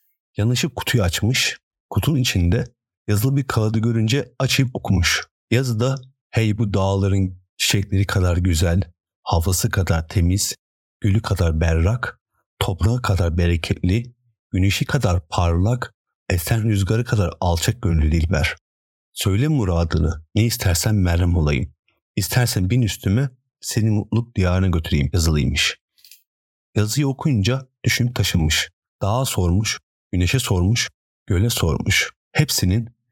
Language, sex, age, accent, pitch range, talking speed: Turkish, male, 50-69, native, 90-120 Hz, 110 wpm